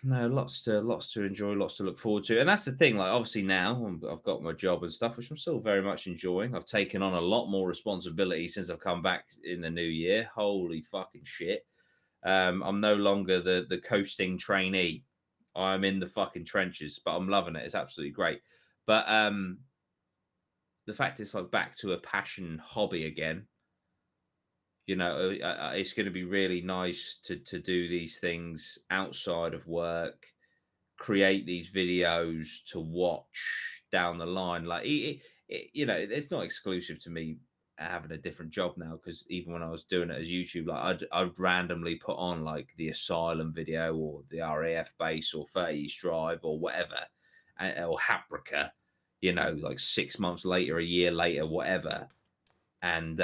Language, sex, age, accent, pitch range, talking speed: English, male, 20-39, British, 85-95 Hz, 180 wpm